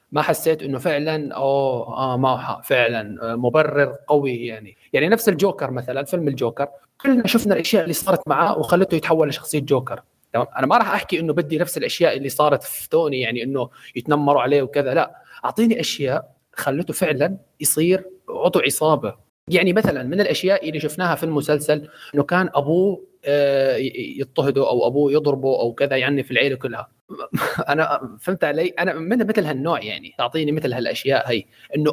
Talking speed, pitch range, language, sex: 165 wpm, 145-185 Hz, Arabic, male